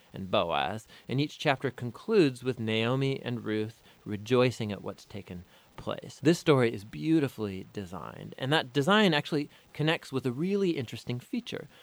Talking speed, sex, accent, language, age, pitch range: 150 wpm, male, American, English, 30-49, 115-160 Hz